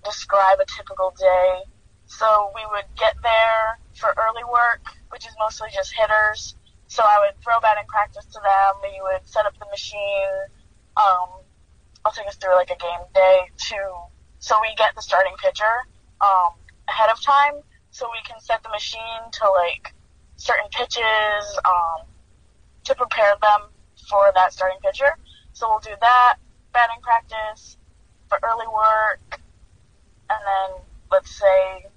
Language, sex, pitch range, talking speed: English, female, 190-240 Hz, 155 wpm